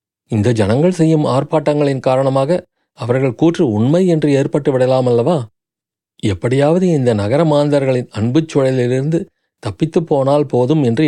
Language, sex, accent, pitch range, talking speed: Tamil, male, native, 120-155 Hz, 115 wpm